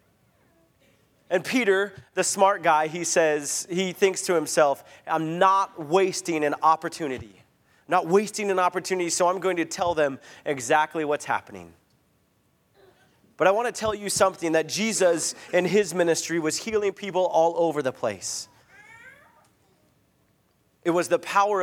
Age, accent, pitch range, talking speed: 30-49, American, 155-185 Hz, 145 wpm